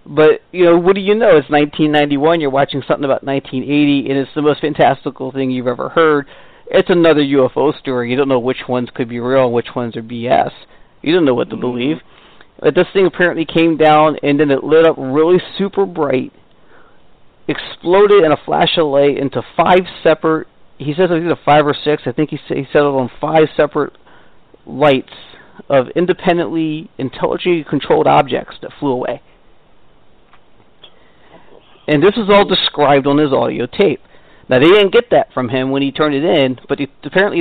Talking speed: 190 wpm